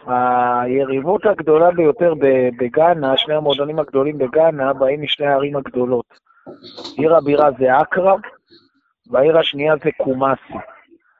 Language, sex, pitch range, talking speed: Hebrew, male, 135-170 Hz, 105 wpm